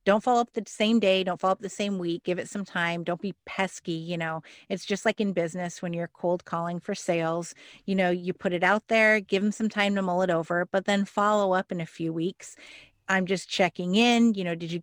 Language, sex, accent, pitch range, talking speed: English, female, American, 180-210 Hz, 255 wpm